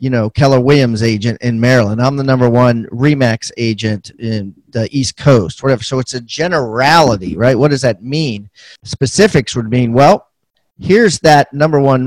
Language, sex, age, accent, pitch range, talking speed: English, male, 40-59, American, 120-150 Hz, 175 wpm